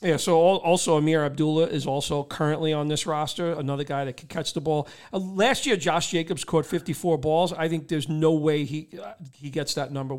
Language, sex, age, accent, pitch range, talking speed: English, male, 40-59, American, 150-180 Hz, 220 wpm